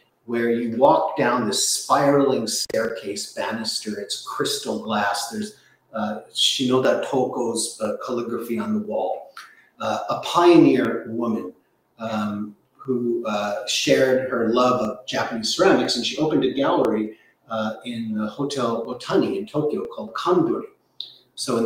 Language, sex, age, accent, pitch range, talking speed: English, male, 40-59, American, 115-145 Hz, 135 wpm